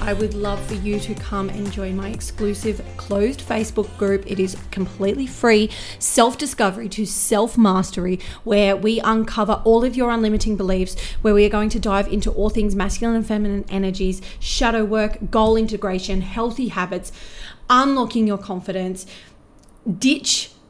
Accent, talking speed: Australian, 150 wpm